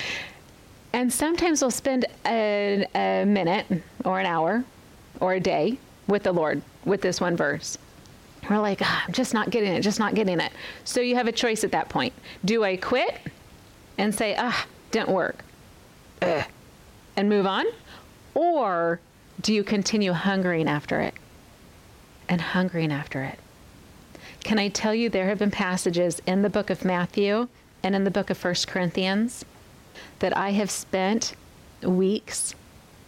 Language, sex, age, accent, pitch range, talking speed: English, female, 40-59, American, 170-205 Hz, 155 wpm